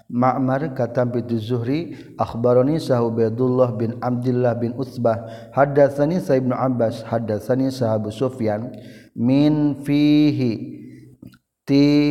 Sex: male